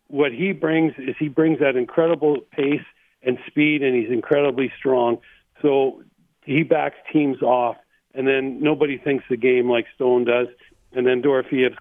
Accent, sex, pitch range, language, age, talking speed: American, male, 125-150 Hz, English, 50-69, 165 wpm